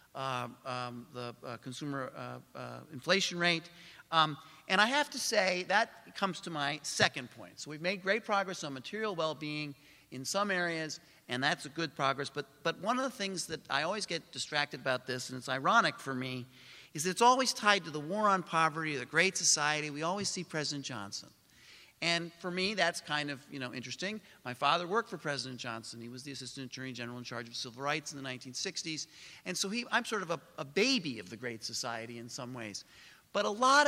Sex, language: male, English